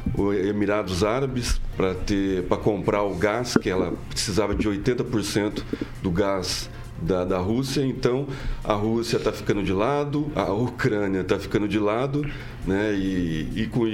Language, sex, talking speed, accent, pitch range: Portuguese, male, 140 wpm, Brazilian, 100-125 Hz